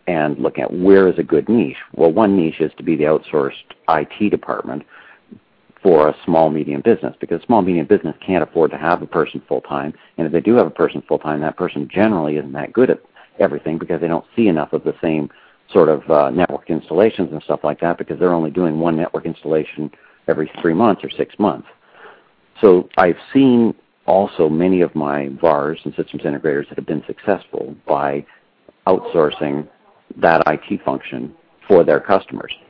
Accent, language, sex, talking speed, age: American, English, male, 185 wpm, 50-69